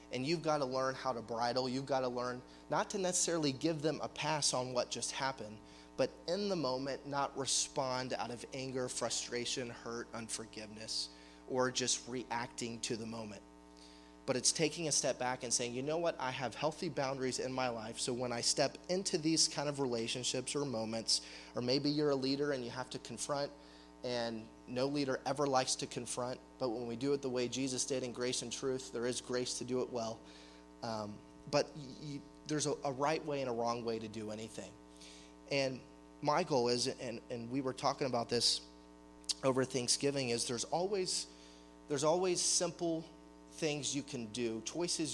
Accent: American